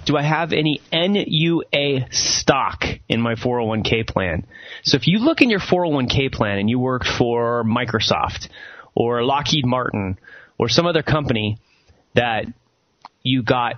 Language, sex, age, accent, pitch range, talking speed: English, male, 30-49, American, 110-140 Hz, 145 wpm